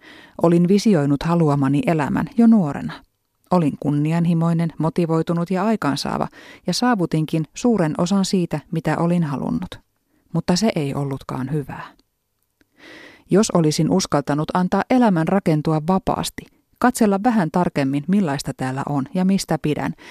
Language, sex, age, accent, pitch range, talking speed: Finnish, female, 30-49, native, 150-205 Hz, 120 wpm